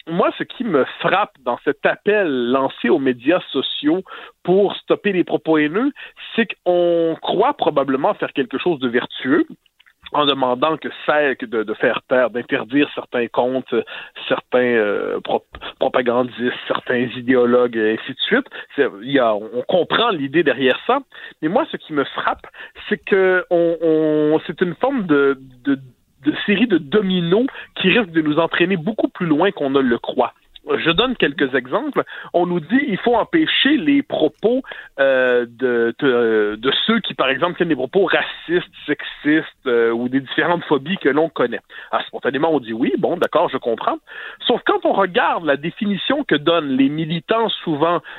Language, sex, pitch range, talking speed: French, male, 130-210 Hz, 165 wpm